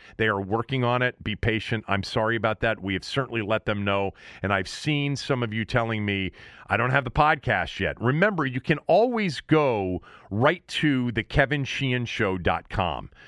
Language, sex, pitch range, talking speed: English, male, 100-135 Hz, 175 wpm